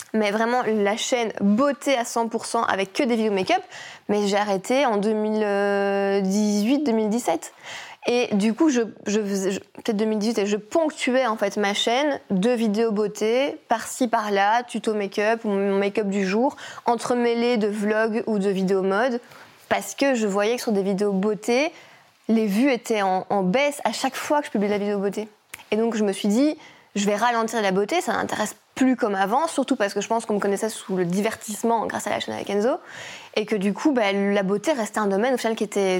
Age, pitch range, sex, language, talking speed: 20-39, 205-240 Hz, female, French, 200 wpm